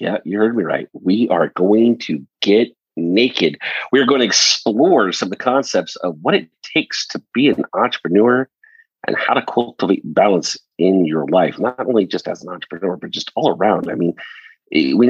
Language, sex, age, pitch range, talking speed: English, male, 40-59, 85-115 Hz, 195 wpm